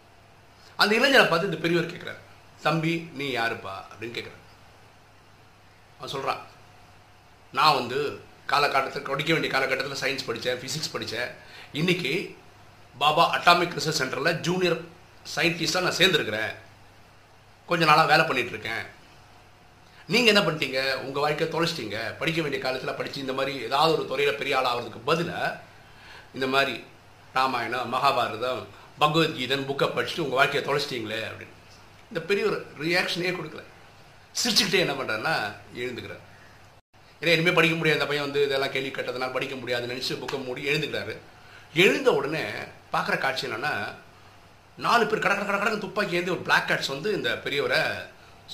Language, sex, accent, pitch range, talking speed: Tamil, male, native, 115-170 Hz, 130 wpm